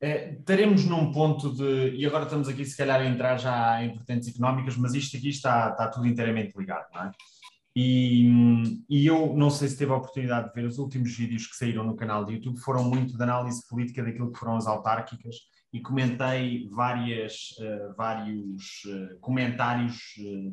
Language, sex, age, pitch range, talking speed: Portuguese, male, 20-39, 120-150 Hz, 170 wpm